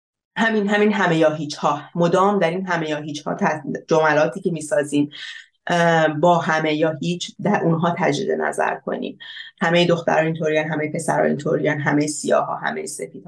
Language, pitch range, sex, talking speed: Persian, 155-190 Hz, female, 165 wpm